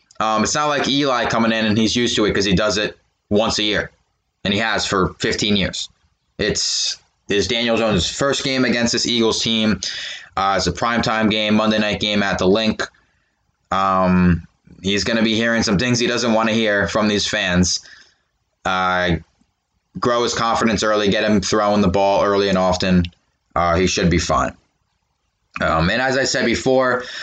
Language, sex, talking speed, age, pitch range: English, male, 190 wpm, 20-39, 100-115 Hz